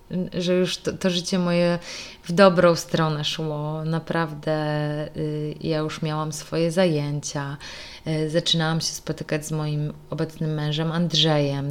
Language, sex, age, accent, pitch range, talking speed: Polish, female, 20-39, native, 155-195 Hz, 125 wpm